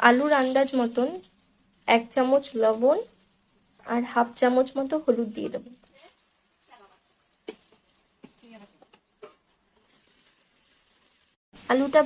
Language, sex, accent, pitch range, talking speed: Bengali, female, native, 245-280 Hz, 70 wpm